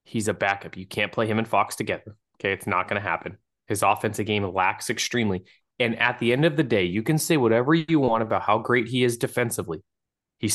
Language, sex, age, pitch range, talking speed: English, male, 20-39, 100-120 Hz, 235 wpm